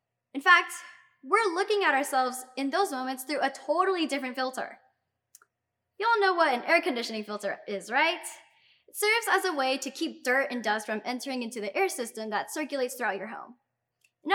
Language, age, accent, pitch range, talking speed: English, 10-29, American, 250-345 Hz, 190 wpm